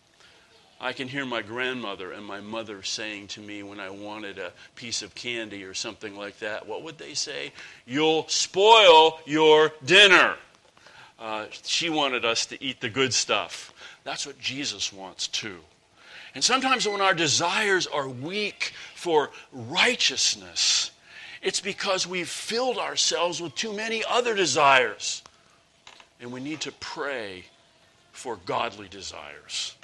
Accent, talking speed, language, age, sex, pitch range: American, 145 wpm, English, 40-59, male, 110-170 Hz